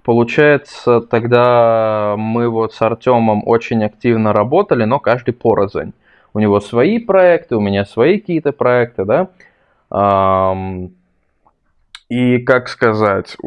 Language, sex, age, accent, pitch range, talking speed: Russian, male, 20-39, native, 105-140 Hz, 110 wpm